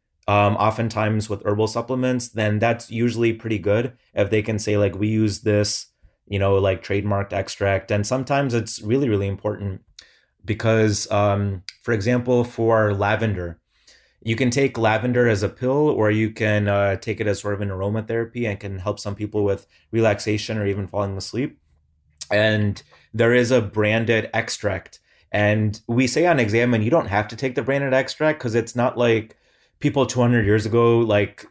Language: English